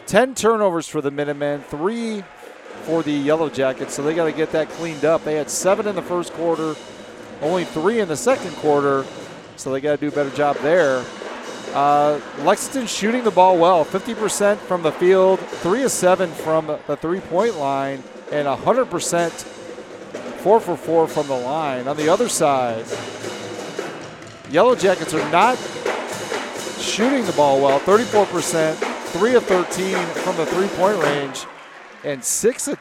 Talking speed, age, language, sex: 160 wpm, 40-59, English, male